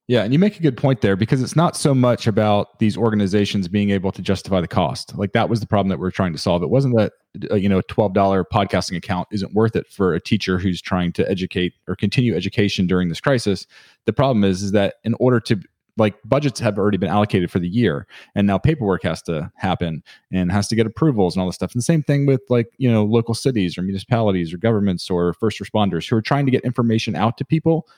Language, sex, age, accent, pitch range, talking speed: English, male, 30-49, American, 95-120 Hz, 250 wpm